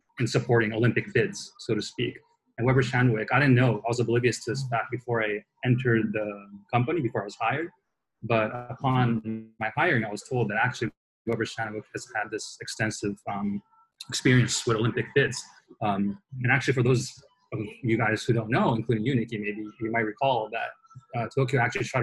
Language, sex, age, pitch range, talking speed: English, male, 20-39, 110-130 Hz, 190 wpm